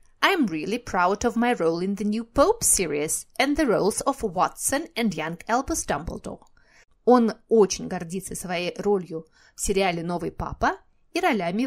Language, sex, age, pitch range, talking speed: Russian, female, 30-49, 195-270 Hz, 65 wpm